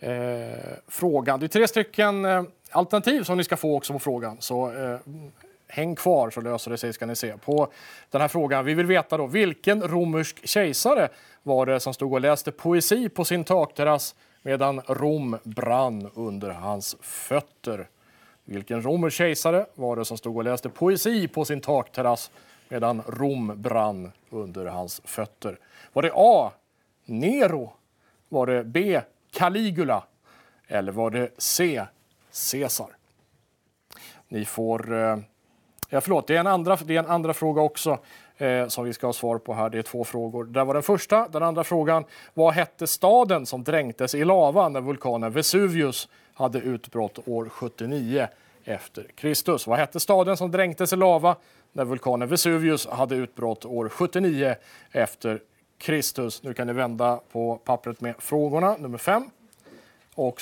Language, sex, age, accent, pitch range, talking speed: Swedish, male, 30-49, Norwegian, 120-170 Hz, 160 wpm